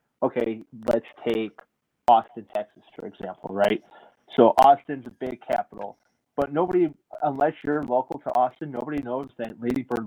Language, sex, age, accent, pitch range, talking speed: English, male, 20-39, American, 115-135 Hz, 150 wpm